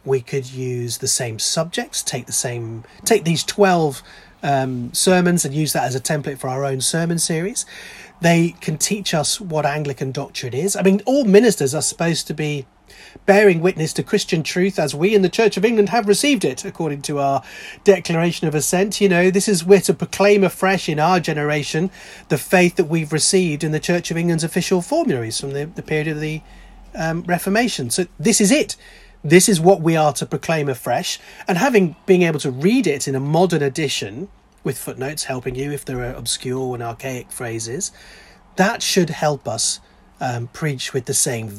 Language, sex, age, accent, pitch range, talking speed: English, male, 30-49, British, 135-190 Hz, 195 wpm